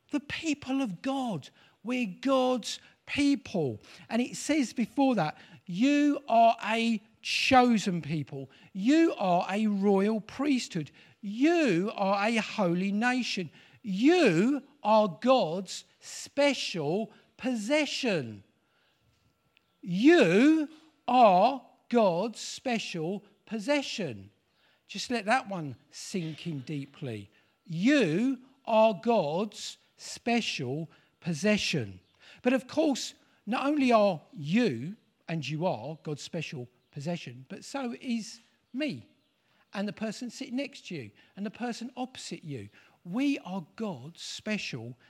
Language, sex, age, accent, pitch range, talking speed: English, male, 50-69, British, 165-250 Hz, 110 wpm